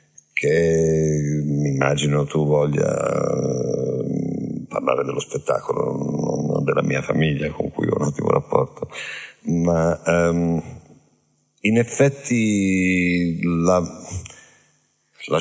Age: 50-69